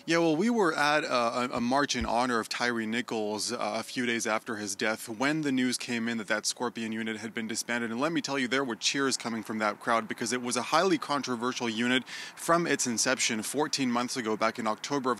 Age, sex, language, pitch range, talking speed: 20-39, male, English, 115-140 Hz, 240 wpm